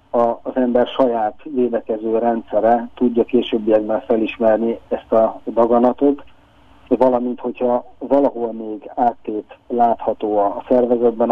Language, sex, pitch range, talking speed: Hungarian, male, 110-125 Hz, 100 wpm